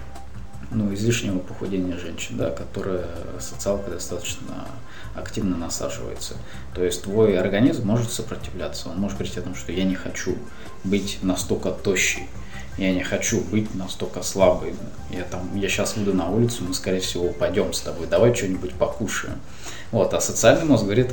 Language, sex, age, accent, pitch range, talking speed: Russian, male, 20-39, native, 90-110 Hz, 155 wpm